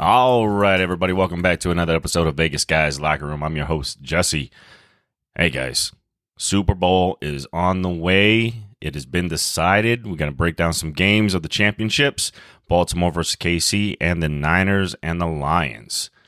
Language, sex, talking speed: English, male, 175 wpm